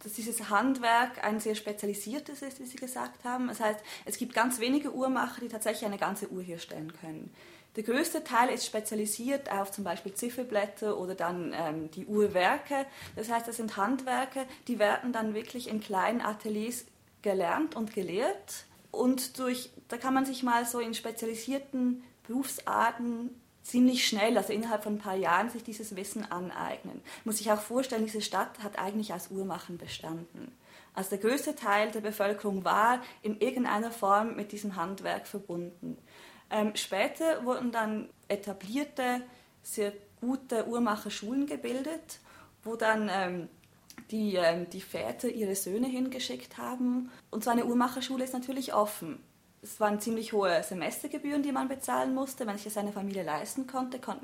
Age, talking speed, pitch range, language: 20-39, 160 wpm, 205-250 Hz, German